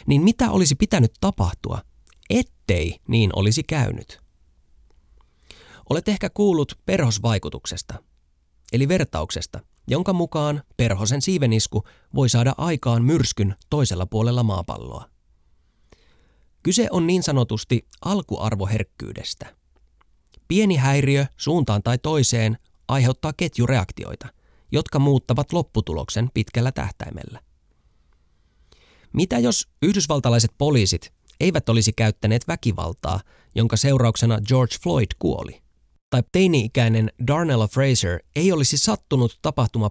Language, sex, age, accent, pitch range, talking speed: Finnish, male, 20-39, native, 95-140 Hz, 95 wpm